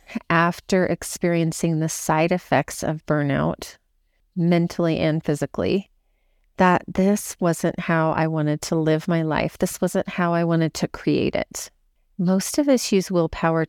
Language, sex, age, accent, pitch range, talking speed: English, female, 30-49, American, 160-185 Hz, 145 wpm